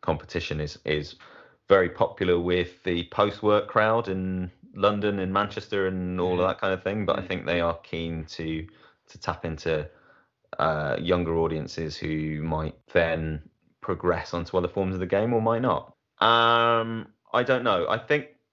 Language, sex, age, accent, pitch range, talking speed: English, male, 20-39, British, 80-100 Hz, 170 wpm